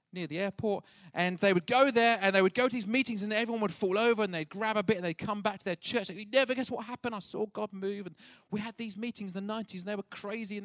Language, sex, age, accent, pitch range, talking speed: English, male, 40-59, British, 160-215 Hz, 305 wpm